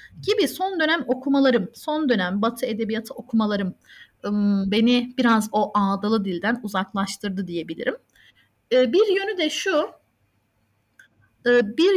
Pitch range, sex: 220-285 Hz, female